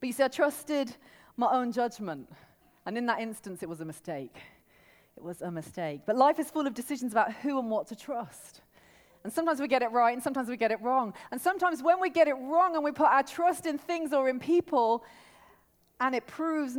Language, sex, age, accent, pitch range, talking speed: English, female, 30-49, British, 210-280 Hz, 230 wpm